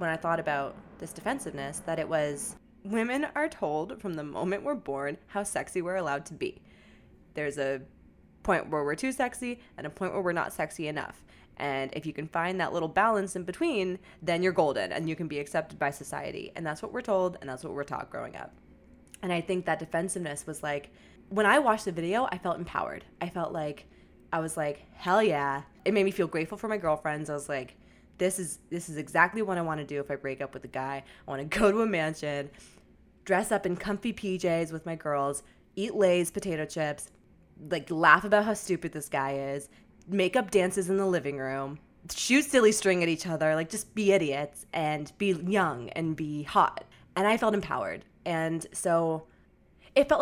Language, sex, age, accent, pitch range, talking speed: English, female, 20-39, American, 150-195 Hz, 215 wpm